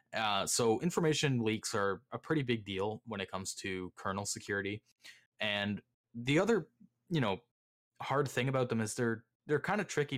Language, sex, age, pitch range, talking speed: English, male, 20-39, 95-120 Hz, 175 wpm